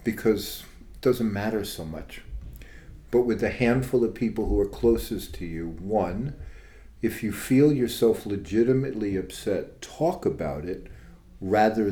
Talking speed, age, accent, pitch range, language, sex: 140 wpm, 50-69, American, 95-115 Hz, English, male